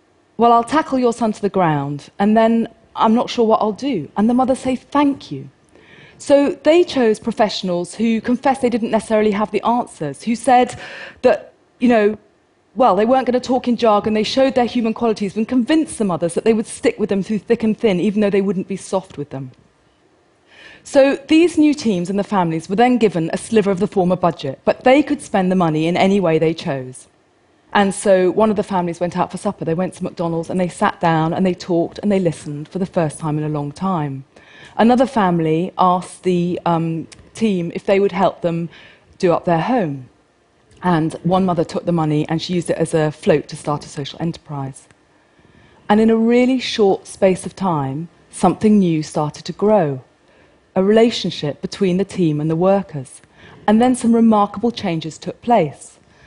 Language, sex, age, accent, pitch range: Chinese, female, 40-59, British, 170-230 Hz